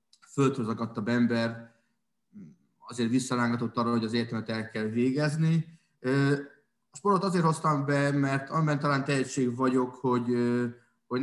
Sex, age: male, 20-39